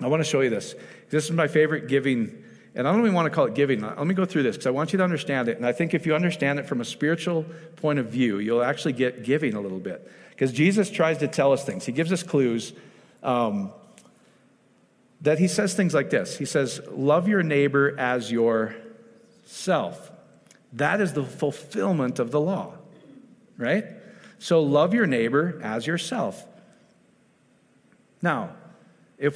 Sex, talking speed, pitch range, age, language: male, 190 wpm, 135-190 Hz, 50-69, English